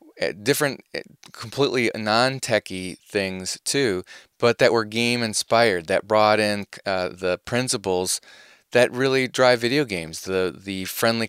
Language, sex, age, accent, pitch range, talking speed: English, male, 30-49, American, 100-125 Hz, 120 wpm